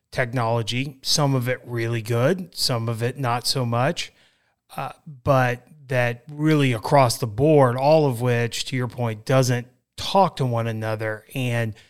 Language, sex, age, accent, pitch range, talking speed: English, male, 30-49, American, 120-150 Hz, 155 wpm